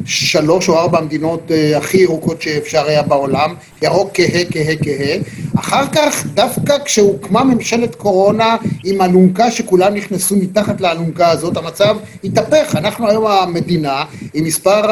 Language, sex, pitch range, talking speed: Hebrew, male, 165-215 Hz, 135 wpm